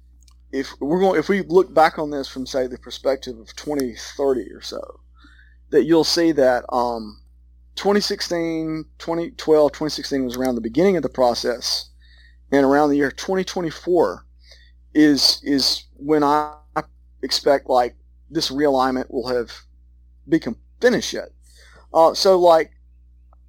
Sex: male